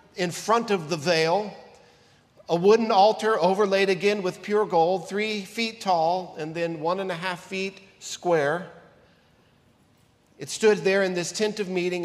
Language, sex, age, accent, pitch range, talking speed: English, male, 50-69, American, 150-195 Hz, 160 wpm